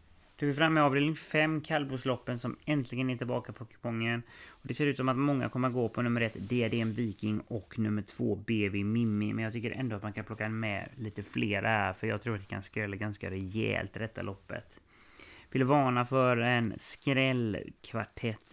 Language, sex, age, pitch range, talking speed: English, male, 30-49, 105-125 Hz, 200 wpm